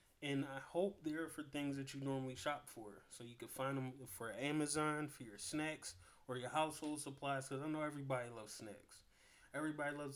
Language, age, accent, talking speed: English, 20-39, American, 195 wpm